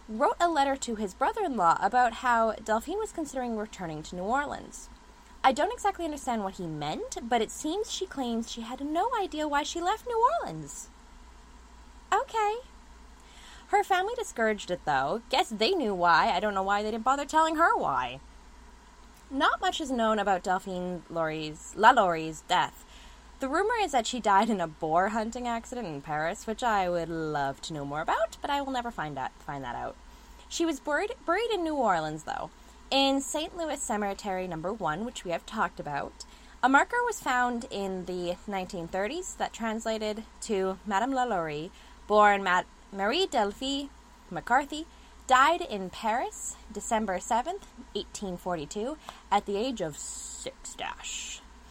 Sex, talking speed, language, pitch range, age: female, 165 wpm, English, 190-300 Hz, 10-29